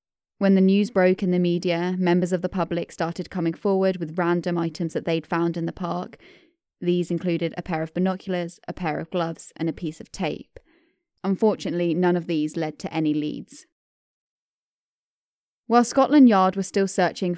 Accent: British